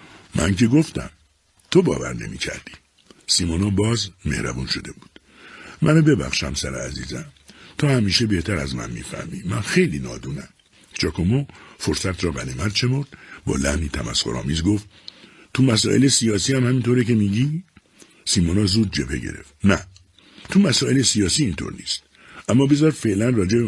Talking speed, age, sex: 140 wpm, 60-79, male